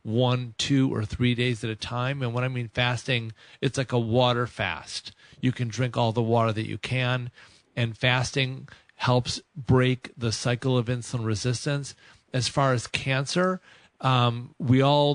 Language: English